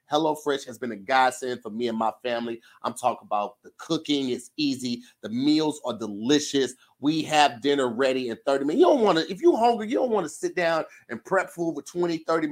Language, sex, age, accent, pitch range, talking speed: English, male, 30-49, American, 145-210 Hz, 230 wpm